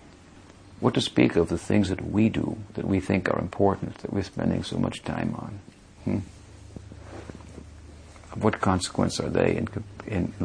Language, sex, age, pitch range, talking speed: English, male, 60-79, 90-110 Hz, 165 wpm